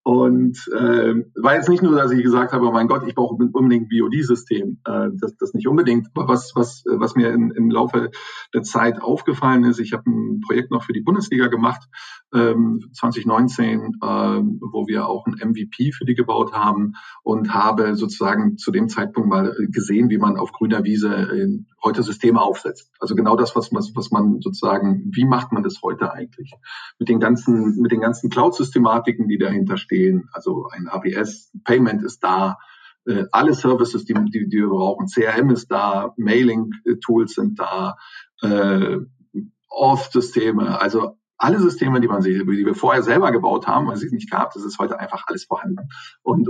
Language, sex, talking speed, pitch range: German, male, 170 wpm, 115-190 Hz